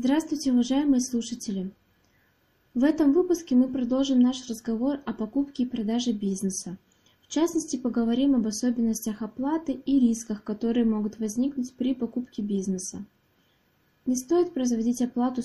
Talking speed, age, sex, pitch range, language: 130 wpm, 20-39, female, 215-255 Hz, Russian